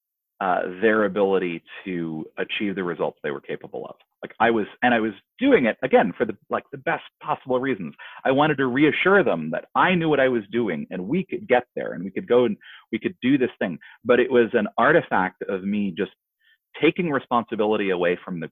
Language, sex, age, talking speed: English, male, 30-49, 215 wpm